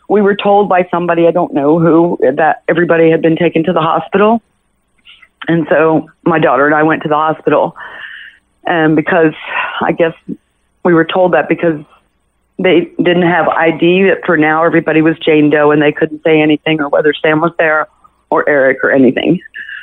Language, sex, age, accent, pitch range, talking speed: English, female, 40-59, American, 155-185 Hz, 185 wpm